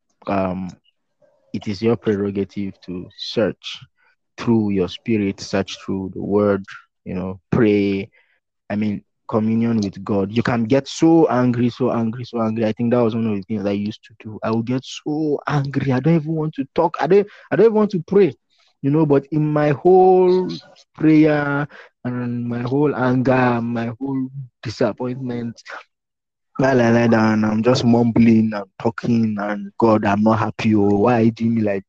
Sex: male